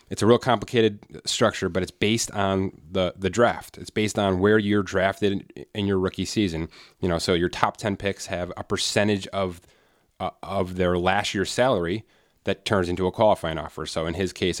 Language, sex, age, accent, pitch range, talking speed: English, male, 30-49, American, 90-105 Hz, 205 wpm